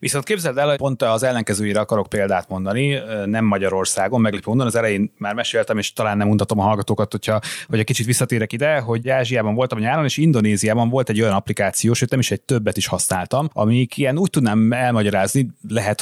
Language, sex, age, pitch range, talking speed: Hungarian, male, 30-49, 105-135 Hz, 195 wpm